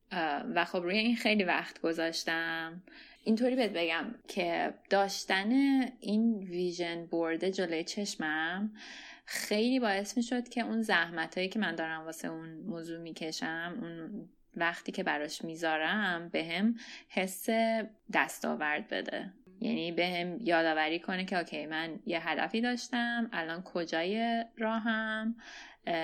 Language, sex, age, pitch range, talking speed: Persian, female, 20-39, 170-245 Hz, 125 wpm